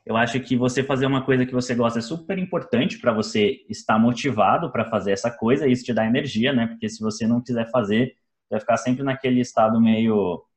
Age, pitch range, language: 20-39, 110-135 Hz, Portuguese